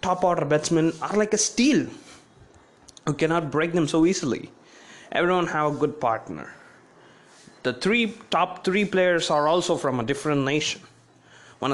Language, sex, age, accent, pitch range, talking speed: English, male, 20-39, Indian, 130-175 Hz, 155 wpm